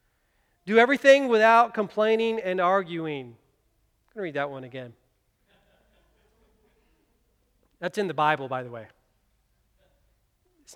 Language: English